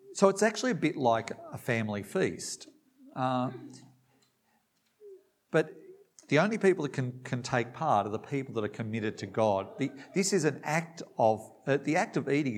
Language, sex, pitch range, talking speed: English, male, 110-145 Hz, 175 wpm